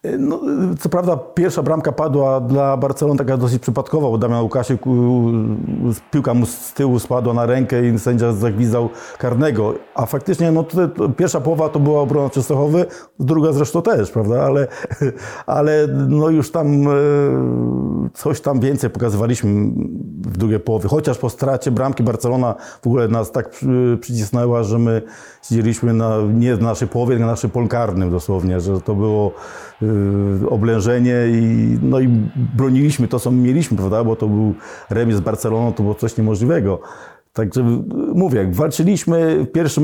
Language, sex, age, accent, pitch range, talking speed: Polish, male, 50-69, native, 115-140 Hz, 150 wpm